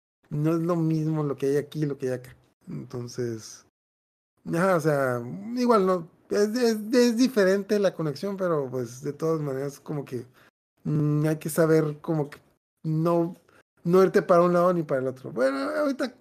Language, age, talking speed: Spanish, 30-49, 185 wpm